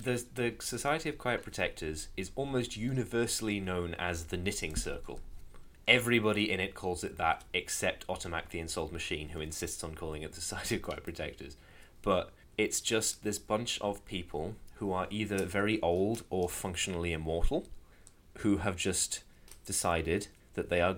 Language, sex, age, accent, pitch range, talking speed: English, male, 20-39, British, 85-105 Hz, 165 wpm